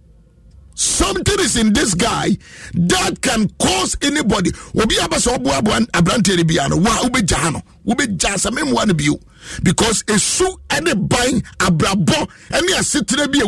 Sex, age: male, 50-69